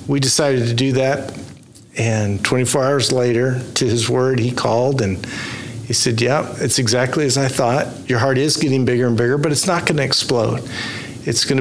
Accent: American